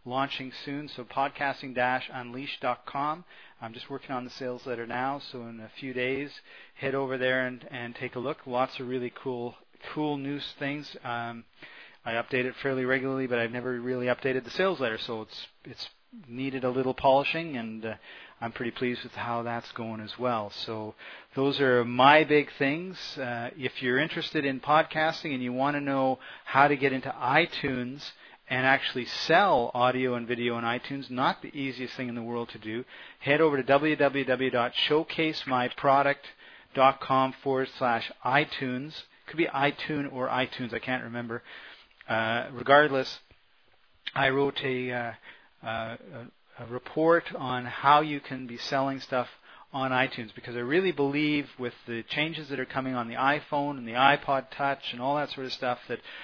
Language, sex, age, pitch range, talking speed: English, male, 40-59, 120-140 Hz, 170 wpm